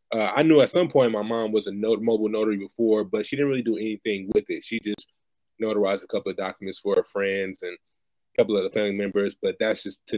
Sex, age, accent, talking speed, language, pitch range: male, 20-39, American, 250 wpm, English, 105-130 Hz